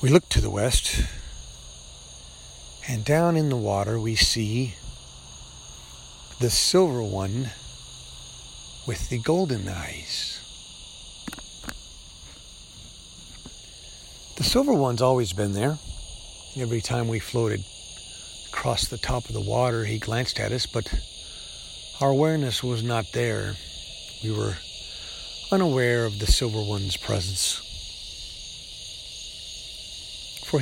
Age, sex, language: 50-69, male, English